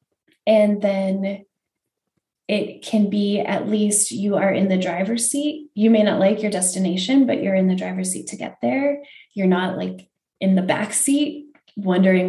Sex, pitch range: female, 190-230 Hz